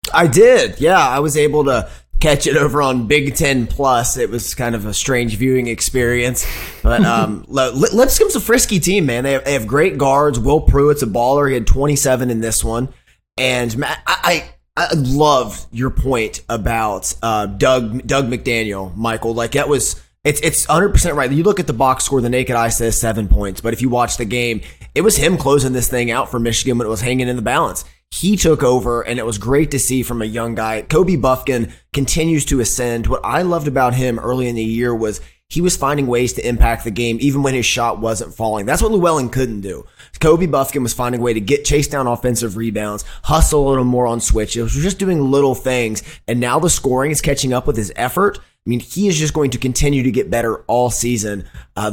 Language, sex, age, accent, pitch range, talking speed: English, male, 20-39, American, 115-145 Hz, 220 wpm